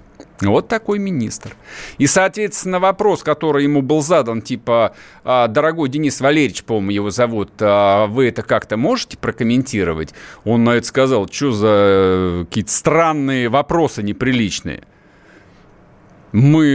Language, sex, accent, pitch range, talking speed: Russian, male, native, 125-165 Hz, 120 wpm